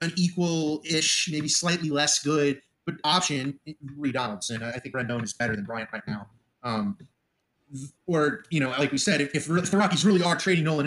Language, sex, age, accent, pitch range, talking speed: English, male, 30-49, American, 140-185 Hz, 190 wpm